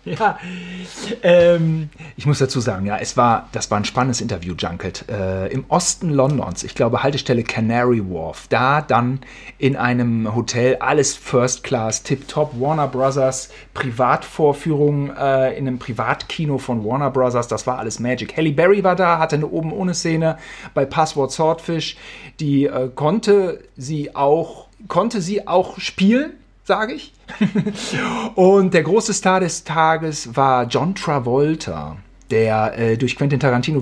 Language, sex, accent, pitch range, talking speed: German, male, German, 120-165 Hz, 150 wpm